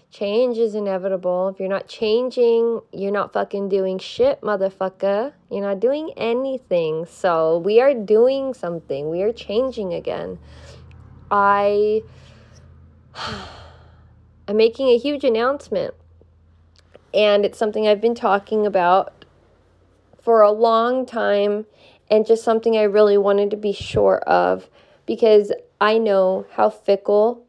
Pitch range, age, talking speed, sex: 185-235 Hz, 20-39, 125 wpm, female